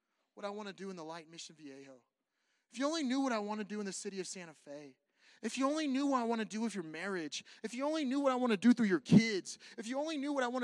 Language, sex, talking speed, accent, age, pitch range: English, male, 315 wpm, American, 30-49, 220-290 Hz